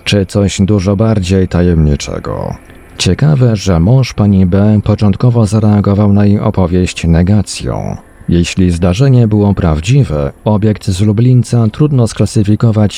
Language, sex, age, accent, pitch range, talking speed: Polish, male, 40-59, native, 95-110 Hz, 115 wpm